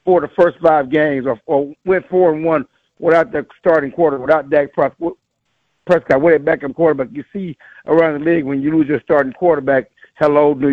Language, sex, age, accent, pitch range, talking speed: English, male, 60-79, American, 140-175 Hz, 195 wpm